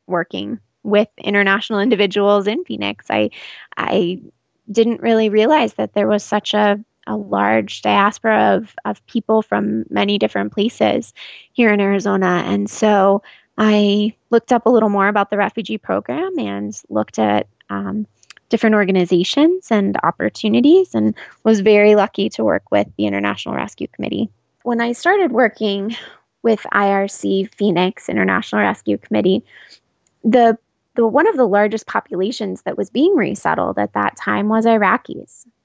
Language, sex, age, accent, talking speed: English, female, 20-39, American, 145 wpm